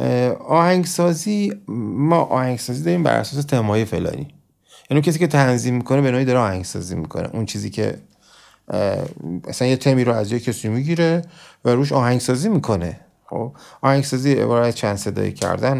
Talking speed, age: 145 wpm, 30-49